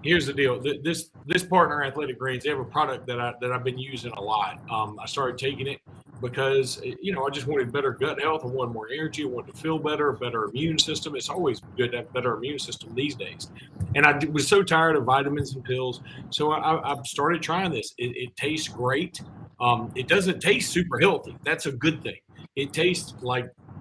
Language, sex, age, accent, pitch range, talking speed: English, male, 40-59, American, 125-155 Hz, 225 wpm